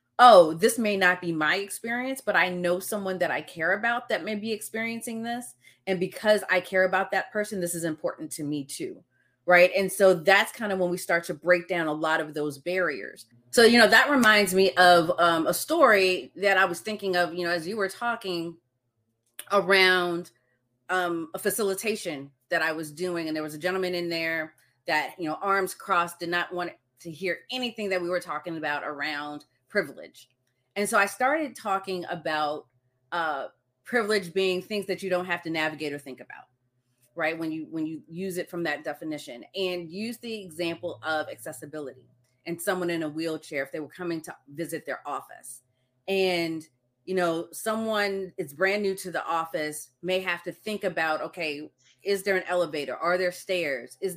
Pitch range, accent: 155-190 Hz, American